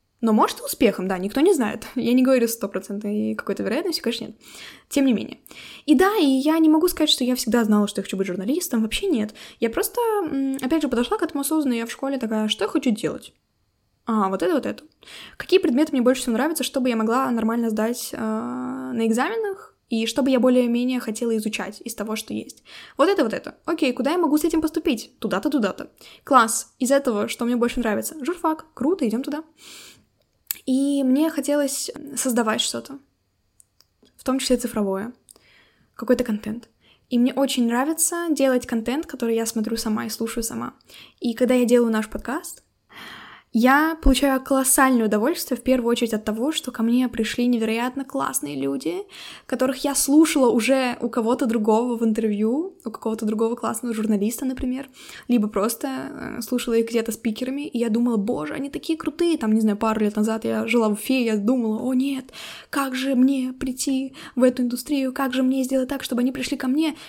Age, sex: 10-29, female